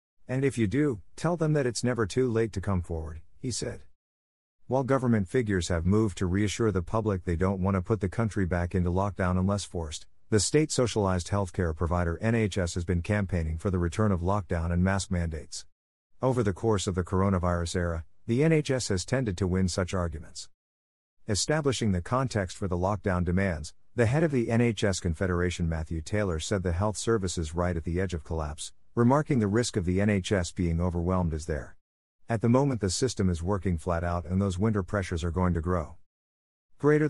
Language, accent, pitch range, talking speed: English, American, 85-110 Hz, 200 wpm